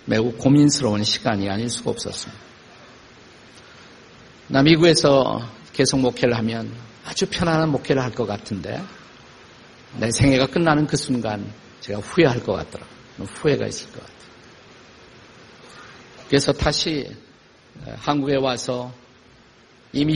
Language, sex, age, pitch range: Korean, male, 50-69, 120-150 Hz